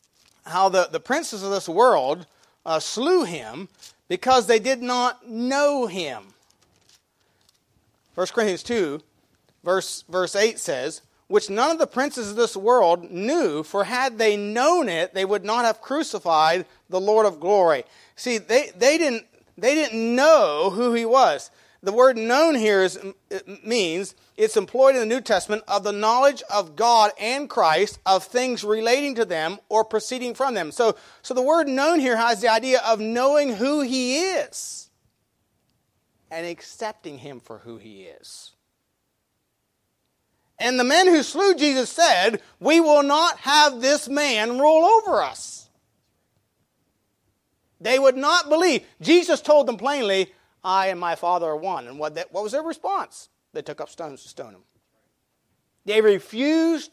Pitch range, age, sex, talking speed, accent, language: 165-265 Hz, 40-59, male, 160 wpm, American, English